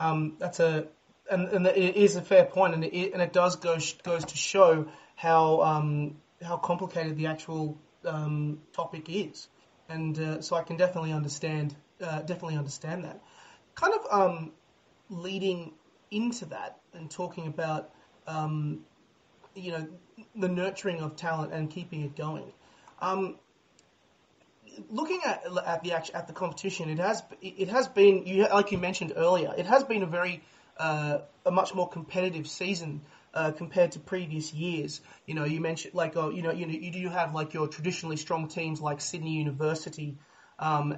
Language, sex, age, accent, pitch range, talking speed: English, male, 30-49, Australian, 155-185 Hz, 170 wpm